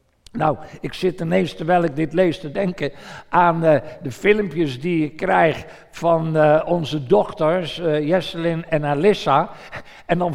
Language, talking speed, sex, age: Dutch, 155 wpm, male, 60-79